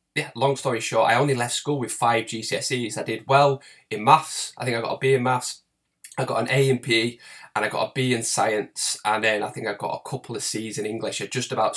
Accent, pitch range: British, 115-135 Hz